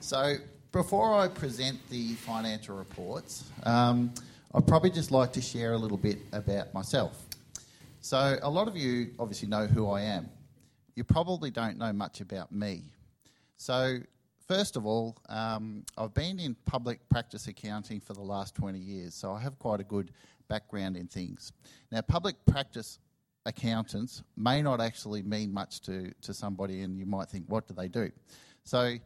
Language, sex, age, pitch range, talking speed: English, male, 40-59, 105-130 Hz, 170 wpm